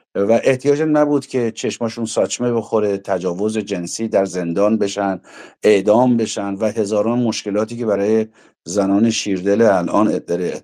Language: Persian